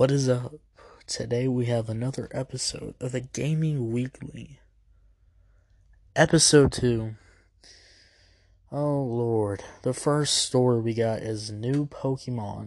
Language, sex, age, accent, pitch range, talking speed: English, male, 20-39, American, 100-145 Hz, 115 wpm